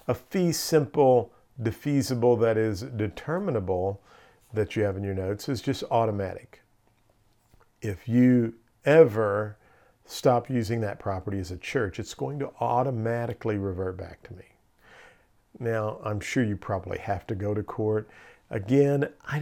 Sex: male